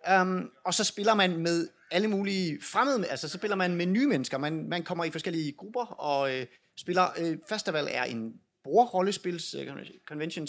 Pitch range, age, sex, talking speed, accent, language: 150-195 Hz, 30-49, male, 175 wpm, native, Danish